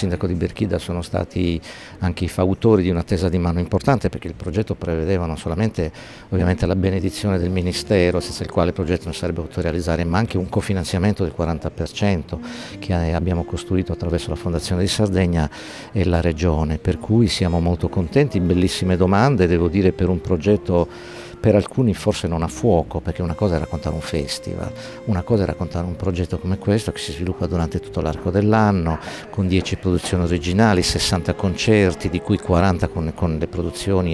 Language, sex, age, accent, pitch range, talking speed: Italian, male, 50-69, native, 85-100 Hz, 185 wpm